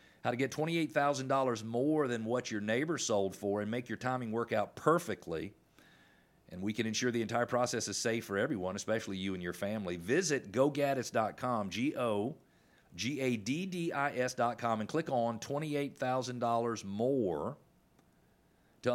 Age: 40-59